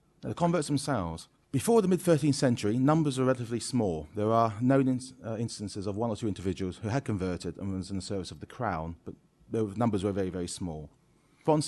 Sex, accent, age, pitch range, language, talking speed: male, British, 40-59, 90-120 Hz, English, 205 wpm